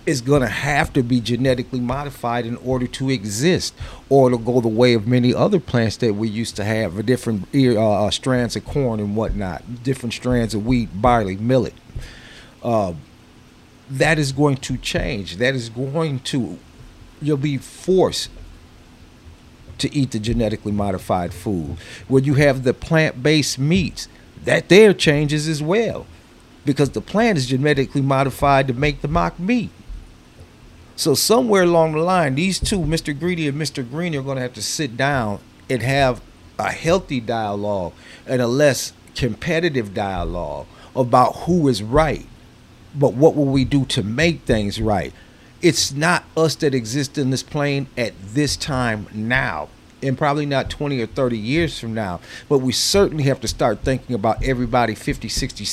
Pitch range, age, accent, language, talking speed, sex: 110-145 Hz, 40-59, American, English, 165 wpm, male